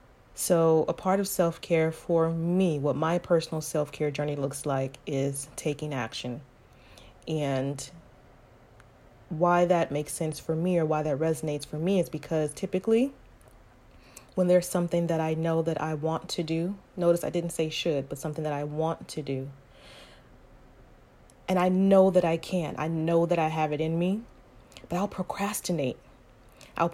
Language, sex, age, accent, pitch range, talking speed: English, female, 30-49, American, 150-185 Hz, 165 wpm